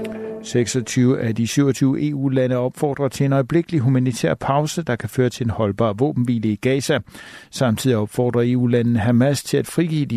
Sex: male